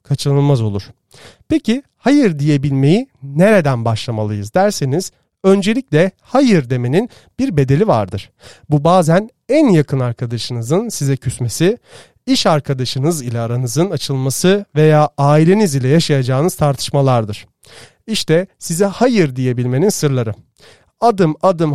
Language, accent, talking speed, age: Turkish, native, 105 wpm, 40-59